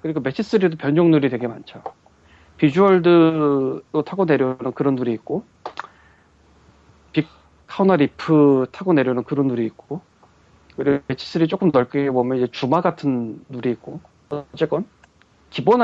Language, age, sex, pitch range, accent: Korean, 40-59, male, 130-185 Hz, native